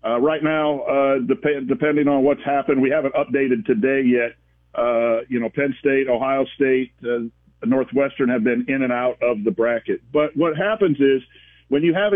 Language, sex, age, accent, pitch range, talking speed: English, male, 50-69, American, 120-145 Hz, 190 wpm